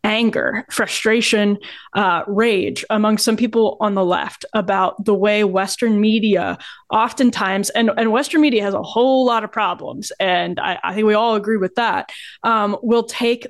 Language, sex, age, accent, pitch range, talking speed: English, female, 20-39, American, 195-230 Hz, 170 wpm